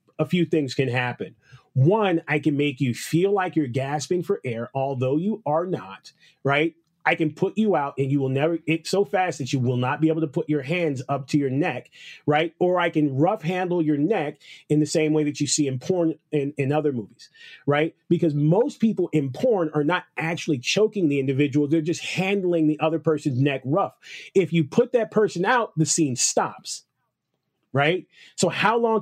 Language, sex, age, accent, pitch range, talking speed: English, male, 30-49, American, 145-170 Hz, 210 wpm